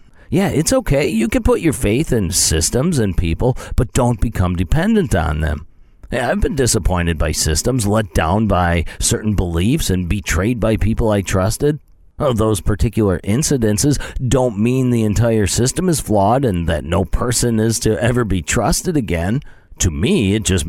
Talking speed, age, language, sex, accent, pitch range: 170 wpm, 40-59, English, male, American, 95-125 Hz